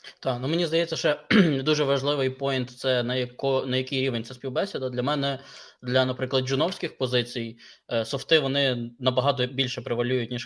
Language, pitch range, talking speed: Ukrainian, 120-135 Hz, 160 wpm